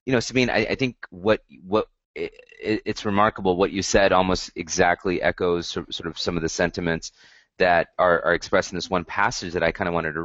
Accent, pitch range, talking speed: American, 85-105 Hz, 215 wpm